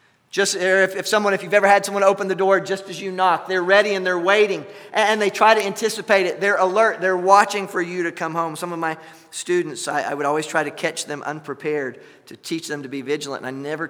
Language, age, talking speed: English, 40-59, 255 wpm